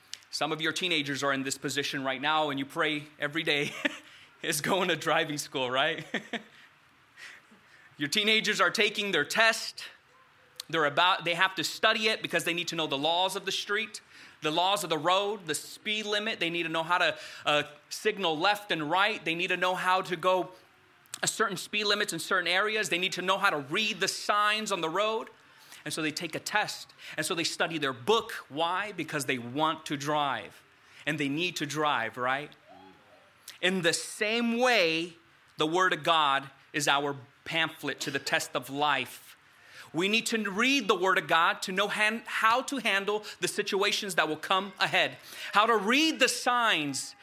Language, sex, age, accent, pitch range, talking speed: English, male, 30-49, American, 150-205 Hz, 195 wpm